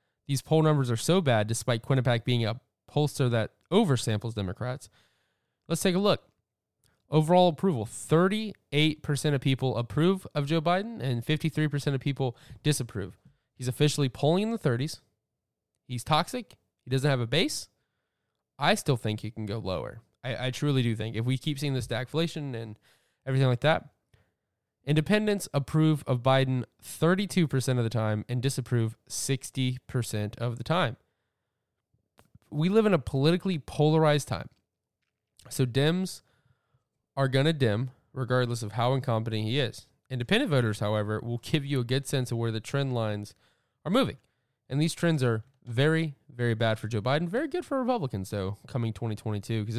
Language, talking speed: English, 160 wpm